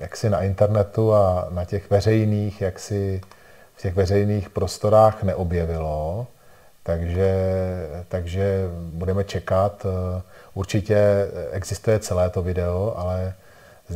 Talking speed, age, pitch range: 110 wpm, 40-59, 85-105 Hz